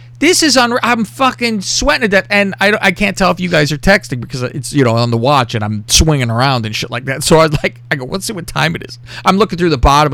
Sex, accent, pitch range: male, American, 120-170 Hz